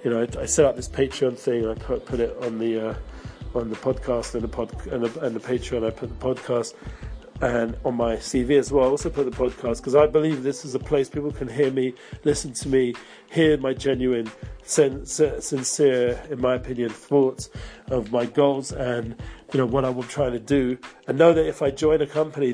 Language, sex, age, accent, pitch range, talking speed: English, male, 40-59, British, 120-140 Hz, 225 wpm